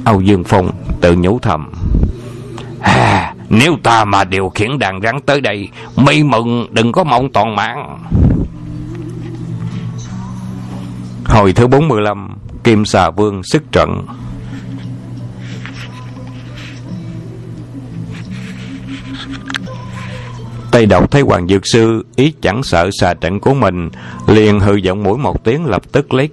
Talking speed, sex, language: 120 wpm, male, Vietnamese